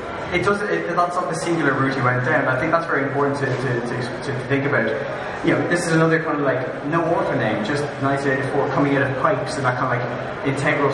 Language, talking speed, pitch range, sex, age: English, 250 wpm, 125-155 Hz, male, 20-39